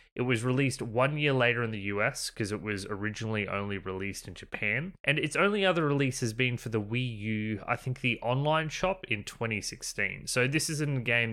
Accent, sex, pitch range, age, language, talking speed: Australian, male, 110-140 Hz, 20-39, English, 210 wpm